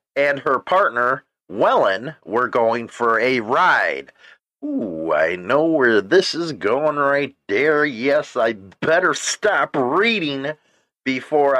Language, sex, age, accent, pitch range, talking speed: English, male, 40-59, American, 140-195 Hz, 125 wpm